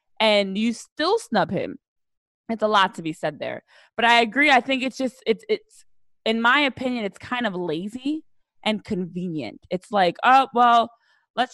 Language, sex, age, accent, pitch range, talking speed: English, female, 20-39, American, 200-295 Hz, 185 wpm